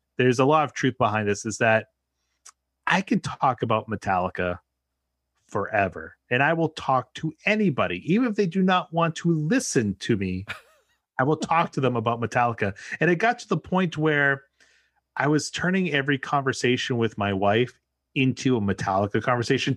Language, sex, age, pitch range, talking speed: English, male, 30-49, 110-160 Hz, 175 wpm